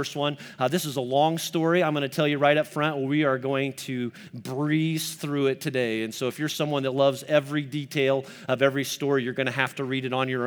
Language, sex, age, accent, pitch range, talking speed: English, male, 40-59, American, 125-155 Hz, 260 wpm